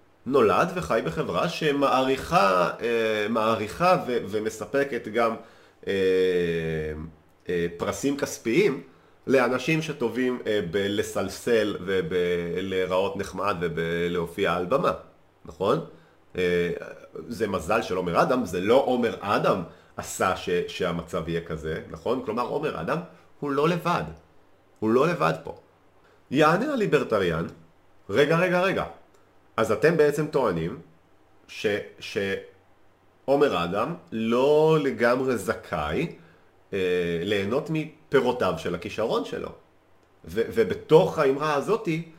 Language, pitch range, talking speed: Hebrew, 95-135 Hz, 105 wpm